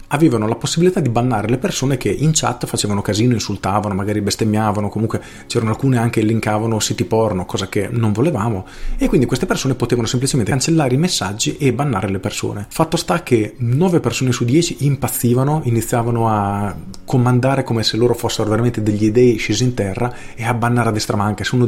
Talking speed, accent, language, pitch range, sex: 190 wpm, native, Italian, 105-130 Hz, male